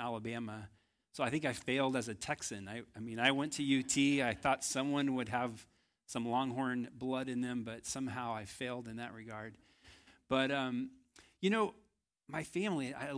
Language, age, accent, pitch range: English, 40-59, American, 120-150 Hz